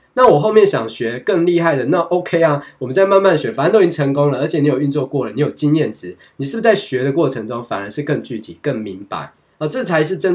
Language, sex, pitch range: Chinese, male, 120-175 Hz